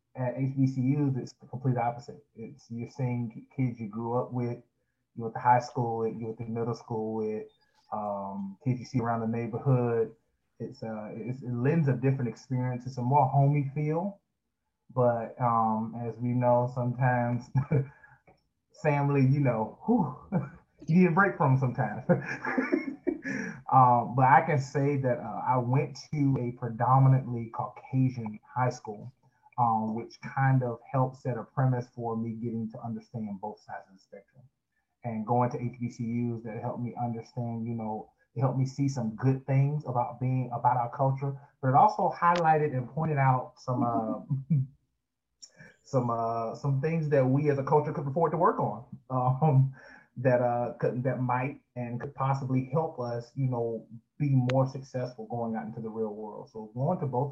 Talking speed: 175 wpm